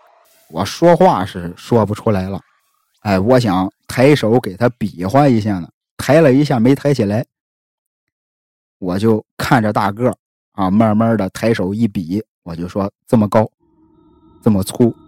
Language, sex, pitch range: Chinese, male, 105-155 Hz